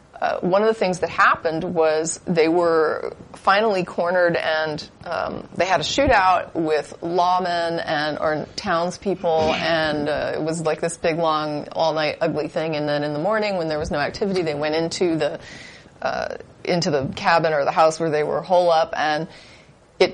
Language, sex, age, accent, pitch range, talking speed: English, female, 30-49, American, 150-180 Hz, 190 wpm